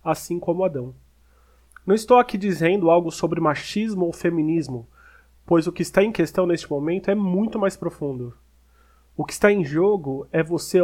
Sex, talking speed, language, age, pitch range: male, 170 wpm, Portuguese, 30-49, 150-185 Hz